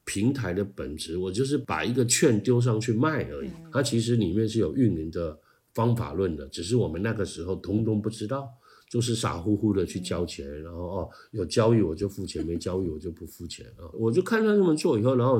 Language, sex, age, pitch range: Chinese, male, 50-69, 95-125 Hz